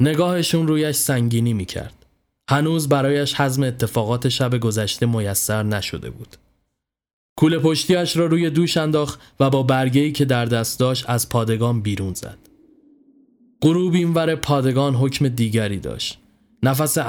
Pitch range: 115-150 Hz